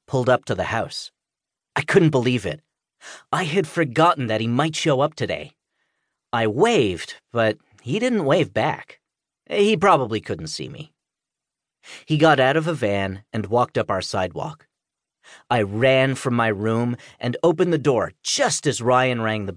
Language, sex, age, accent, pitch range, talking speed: English, male, 40-59, American, 110-160 Hz, 170 wpm